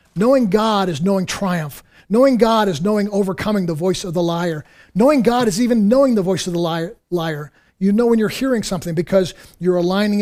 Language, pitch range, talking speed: English, 175-220 Hz, 200 wpm